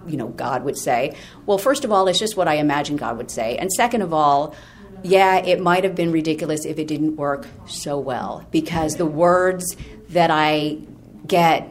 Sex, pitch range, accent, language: female, 150-185 Hz, American, English